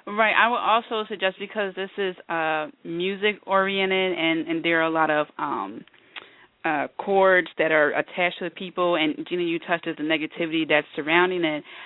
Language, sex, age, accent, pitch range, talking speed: English, female, 30-49, American, 155-175 Hz, 180 wpm